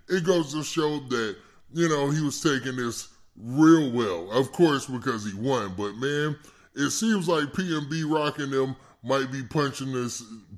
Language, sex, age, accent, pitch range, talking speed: English, female, 20-39, American, 115-150 Hz, 170 wpm